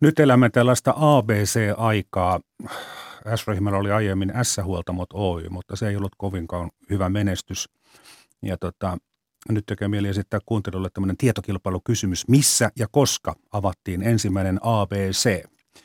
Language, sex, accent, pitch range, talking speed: Finnish, male, native, 100-130 Hz, 120 wpm